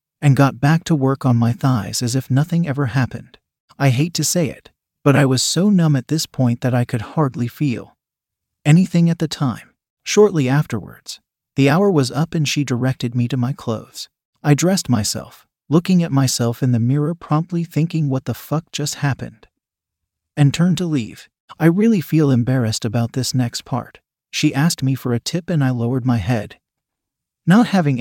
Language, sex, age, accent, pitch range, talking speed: English, male, 40-59, American, 125-155 Hz, 190 wpm